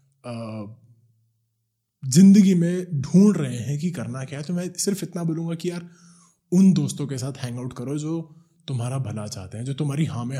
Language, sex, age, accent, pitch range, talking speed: Hindi, male, 20-39, native, 110-145 Hz, 180 wpm